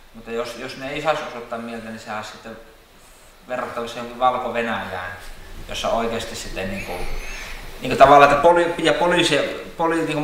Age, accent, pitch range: 20-39, native, 110-135 Hz